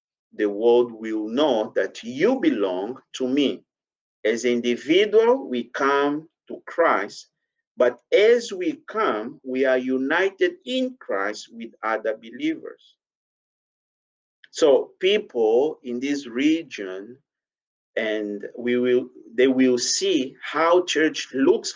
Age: 50-69